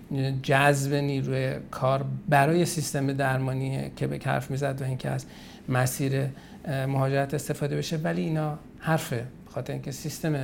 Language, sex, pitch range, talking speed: Persian, male, 130-155 Hz, 125 wpm